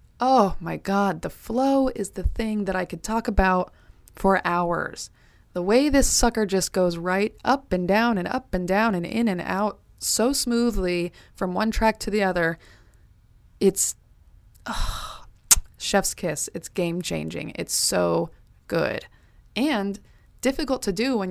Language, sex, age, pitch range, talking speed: English, female, 20-39, 165-200 Hz, 155 wpm